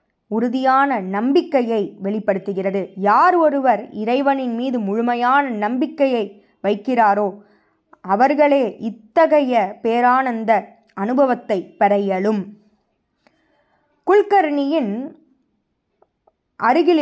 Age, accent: 20-39, native